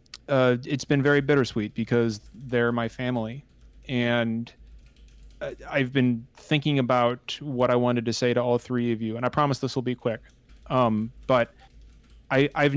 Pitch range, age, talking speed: 120-135 Hz, 30-49, 160 wpm